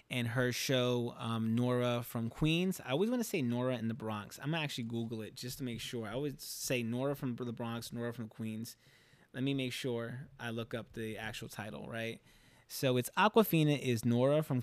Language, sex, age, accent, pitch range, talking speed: English, male, 20-39, American, 115-140 Hz, 220 wpm